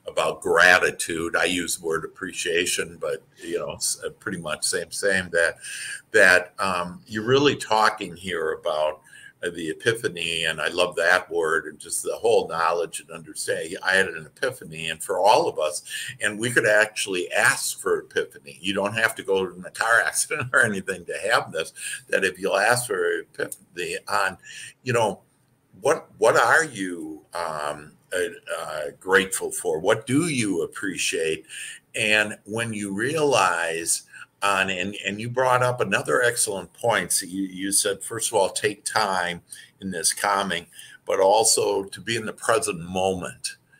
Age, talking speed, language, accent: 60-79, 165 wpm, English, American